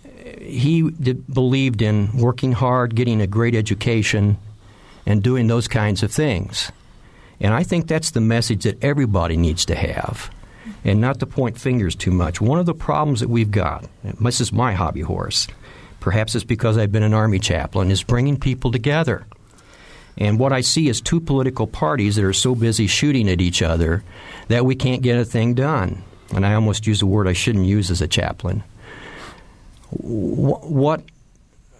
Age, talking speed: 50-69, 175 wpm